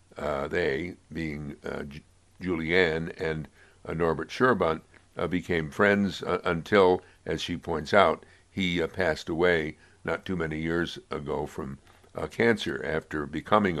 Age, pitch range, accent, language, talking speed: 60-79, 75-90 Hz, American, English, 140 wpm